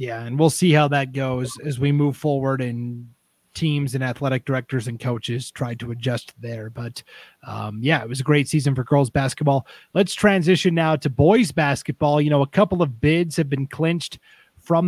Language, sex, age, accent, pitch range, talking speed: English, male, 30-49, American, 130-160 Hz, 200 wpm